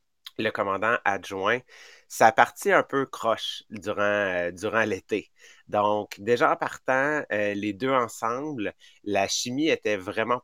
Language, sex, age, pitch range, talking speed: English, male, 30-49, 100-125 Hz, 140 wpm